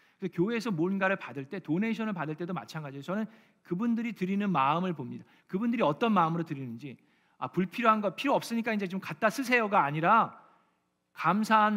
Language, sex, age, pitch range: Korean, male, 40-59, 160-215 Hz